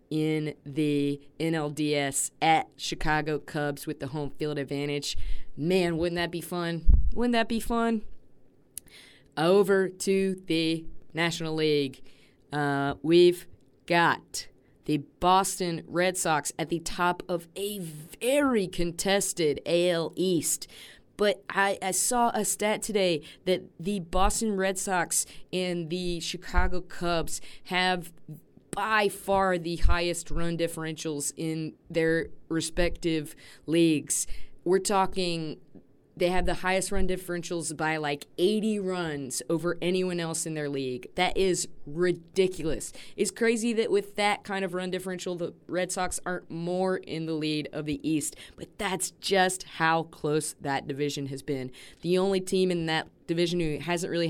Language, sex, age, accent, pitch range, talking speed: English, female, 30-49, American, 150-185 Hz, 140 wpm